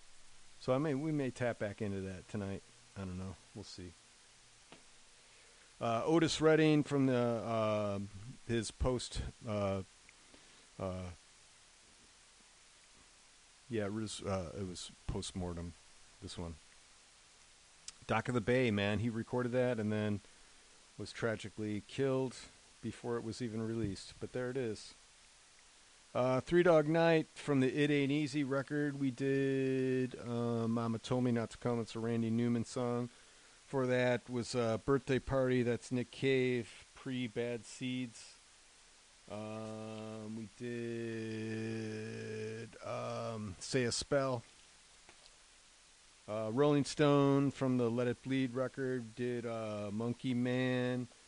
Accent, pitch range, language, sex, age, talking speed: American, 110-130 Hz, English, male, 40-59, 130 wpm